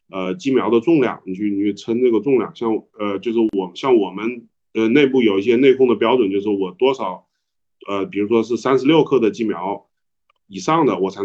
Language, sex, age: Chinese, male, 20-39